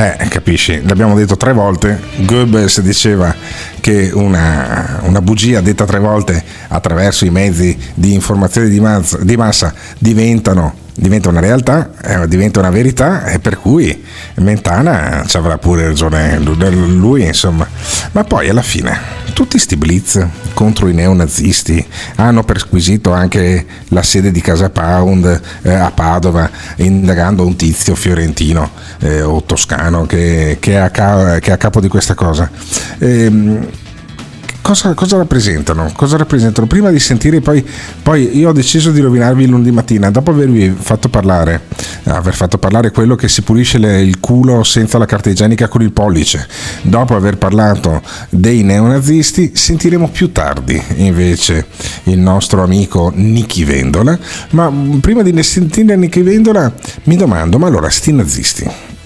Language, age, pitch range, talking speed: Italian, 50-69, 90-115 Hz, 150 wpm